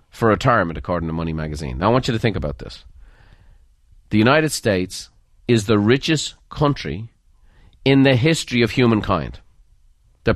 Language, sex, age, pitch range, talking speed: English, male, 40-59, 95-130 Hz, 155 wpm